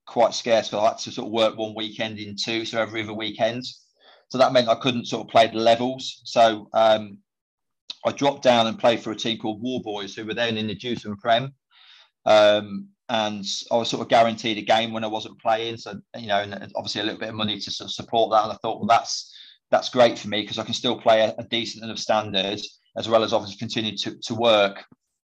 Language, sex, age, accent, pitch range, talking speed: English, male, 30-49, British, 105-115 Hz, 245 wpm